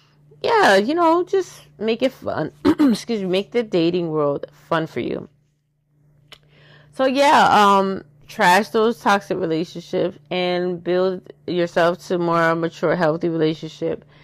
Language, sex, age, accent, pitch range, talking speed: English, female, 20-39, American, 160-210 Hz, 130 wpm